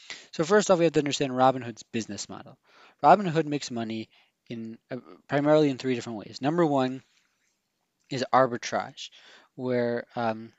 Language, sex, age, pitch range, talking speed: English, male, 20-39, 125-150 Hz, 145 wpm